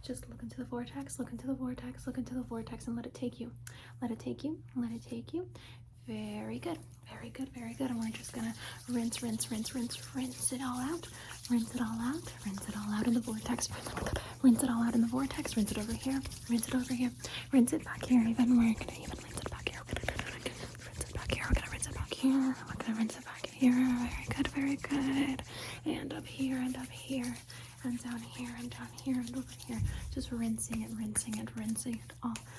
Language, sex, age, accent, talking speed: English, female, 30-49, American, 250 wpm